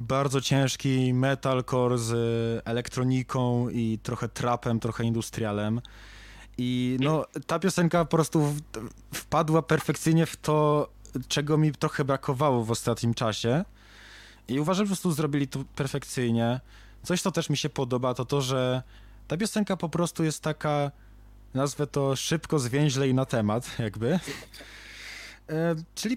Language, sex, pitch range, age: Polish, male, 115-150 Hz, 20-39